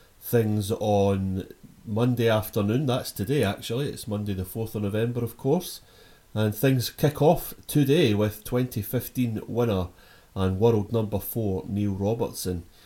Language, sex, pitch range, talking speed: English, male, 100-135 Hz, 135 wpm